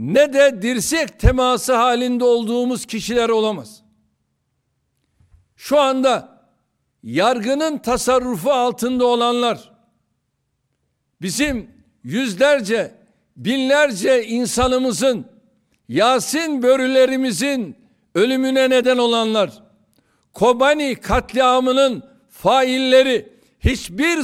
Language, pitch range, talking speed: Turkish, 235-275 Hz, 65 wpm